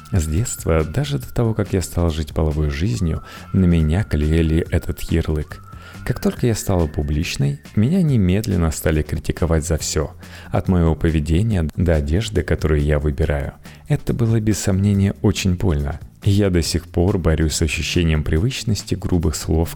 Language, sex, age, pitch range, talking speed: Russian, male, 30-49, 80-105 Hz, 155 wpm